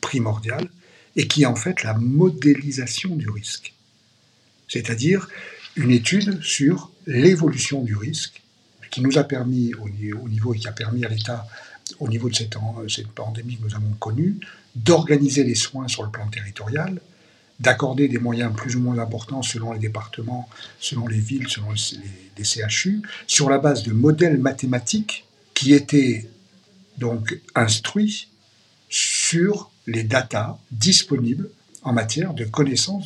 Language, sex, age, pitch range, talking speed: French, male, 60-79, 110-150 Hz, 145 wpm